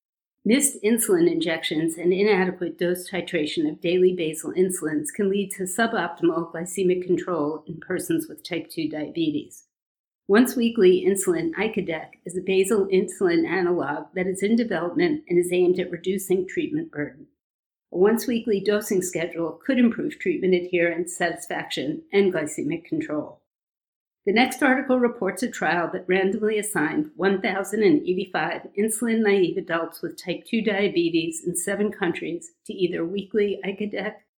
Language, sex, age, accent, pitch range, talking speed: English, female, 50-69, American, 175-225 Hz, 135 wpm